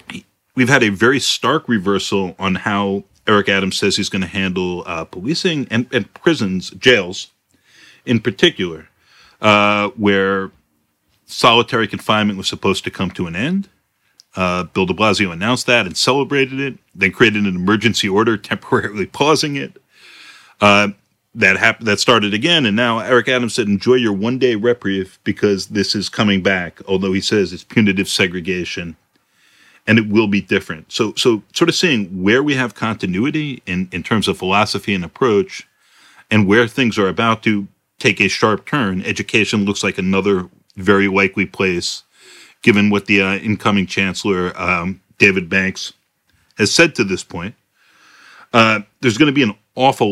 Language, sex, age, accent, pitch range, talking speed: English, male, 40-59, American, 95-115 Hz, 160 wpm